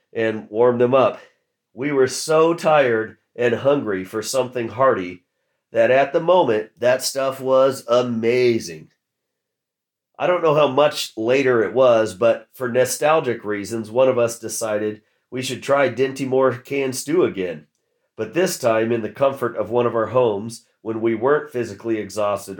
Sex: male